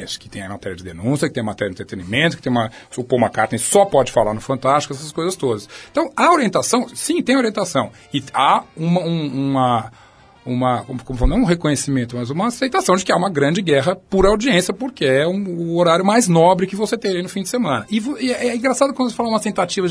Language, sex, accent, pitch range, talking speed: Portuguese, male, Brazilian, 140-230 Hz, 235 wpm